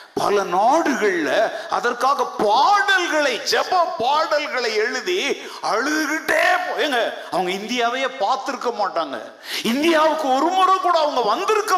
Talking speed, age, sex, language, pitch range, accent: 80 wpm, 50-69, male, Tamil, 260-365 Hz, native